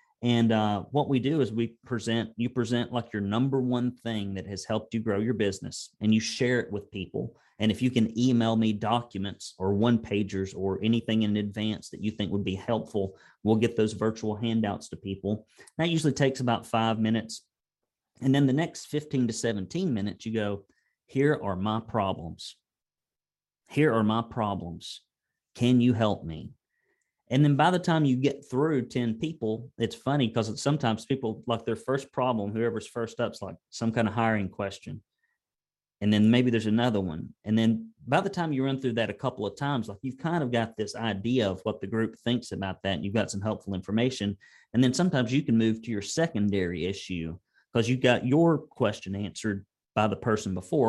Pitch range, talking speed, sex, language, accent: 105-125 Hz, 200 wpm, male, English, American